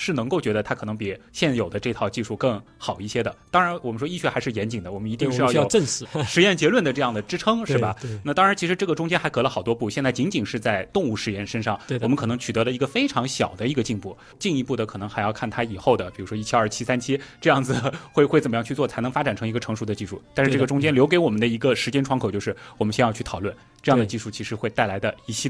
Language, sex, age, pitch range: Chinese, male, 20-39, 110-140 Hz